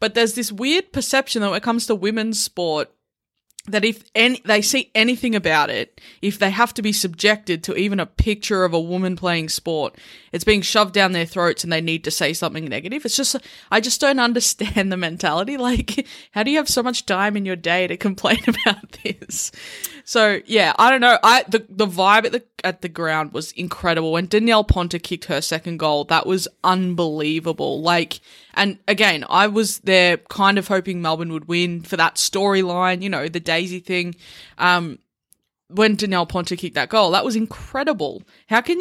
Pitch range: 180-225 Hz